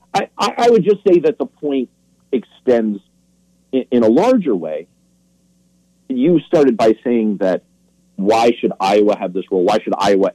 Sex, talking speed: male, 160 wpm